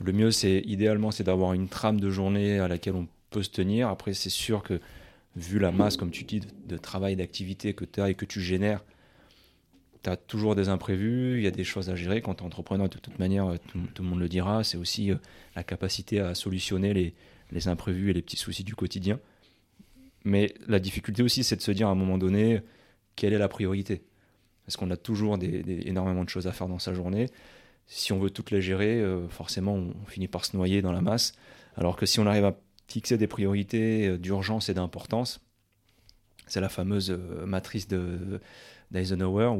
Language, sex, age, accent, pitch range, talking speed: French, male, 30-49, French, 95-105 Hz, 215 wpm